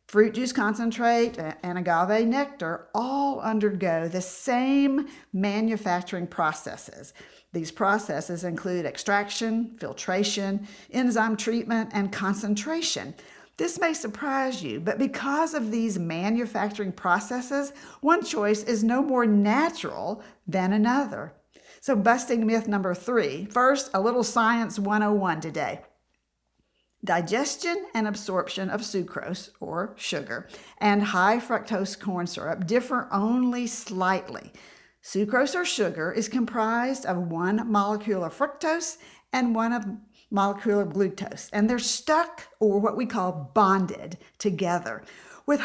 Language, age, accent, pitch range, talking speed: English, 50-69, American, 195-245 Hz, 120 wpm